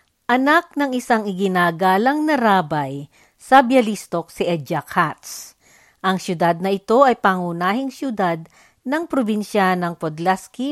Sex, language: female, Filipino